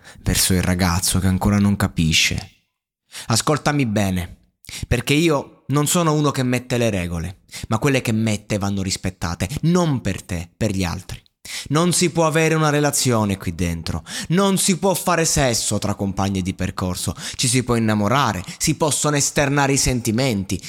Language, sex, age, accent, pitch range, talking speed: Italian, male, 20-39, native, 105-150 Hz, 160 wpm